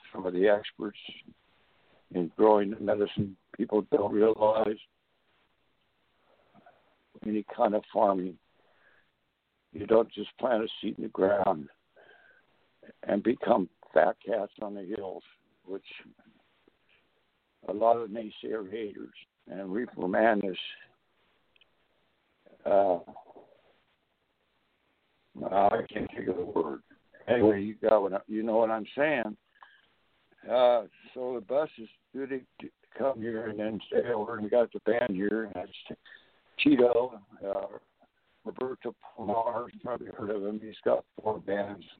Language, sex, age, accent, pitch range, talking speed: English, male, 60-79, American, 100-110 Hz, 130 wpm